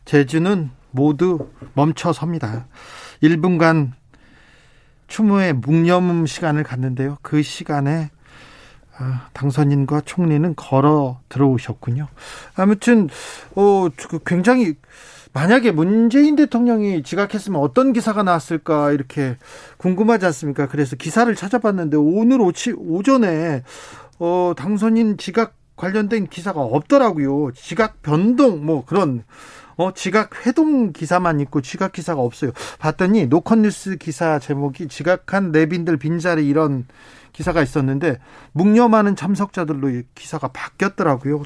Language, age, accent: Korean, 40-59, native